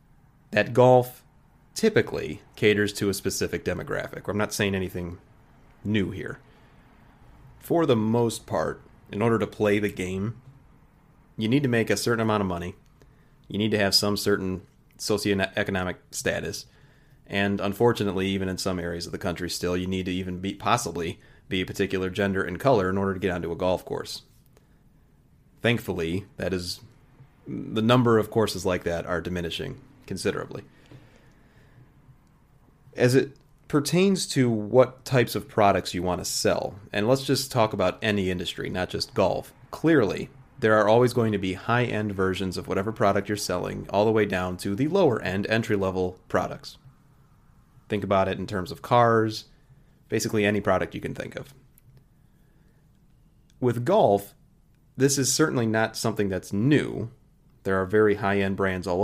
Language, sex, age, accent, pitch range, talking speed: English, male, 30-49, American, 95-130 Hz, 160 wpm